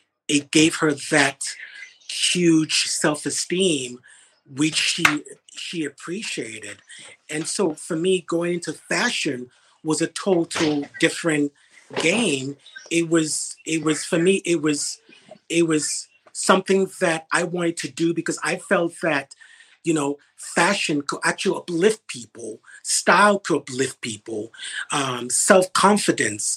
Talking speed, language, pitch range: 125 wpm, English, 140-170 Hz